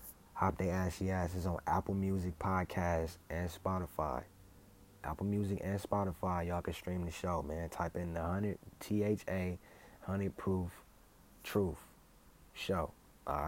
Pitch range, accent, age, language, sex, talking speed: 85-105 Hz, American, 20-39, English, male, 140 wpm